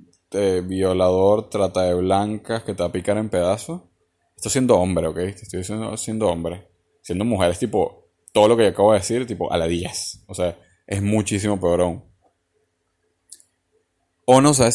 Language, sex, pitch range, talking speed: Spanish, male, 90-115 Hz, 175 wpm